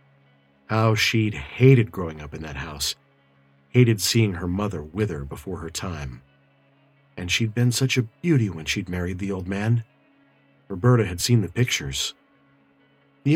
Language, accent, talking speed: English, American, 155 wpm